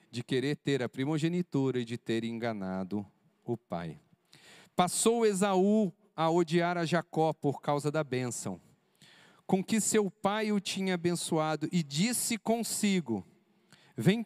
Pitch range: 140-195 Hz